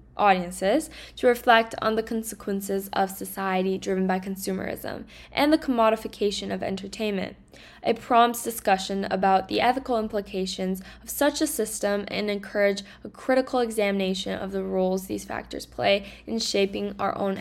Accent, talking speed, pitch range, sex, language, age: American, 145 wpm, 190-235 Hz, female, English, 10-29